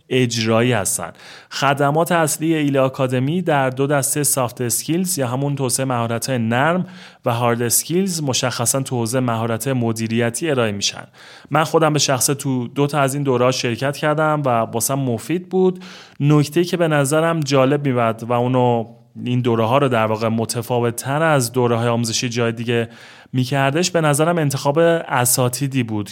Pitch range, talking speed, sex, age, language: 120-150 Hz, 155 wpm, male, 30-49, Persian